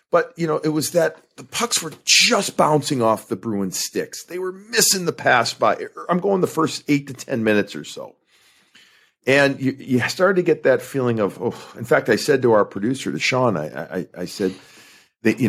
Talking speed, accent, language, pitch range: 215 wpm, American, English, 105-140 Hz